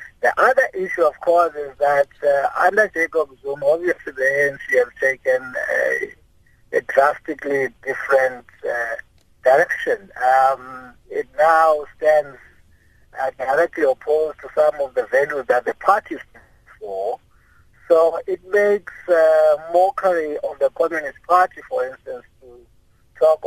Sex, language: male, English